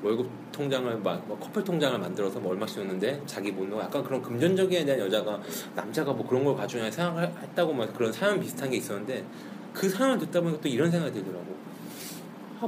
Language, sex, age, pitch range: Korean, male, 30-49, 130-190 Hz